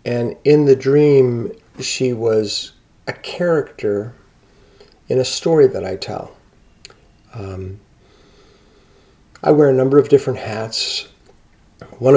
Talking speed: 115 wpm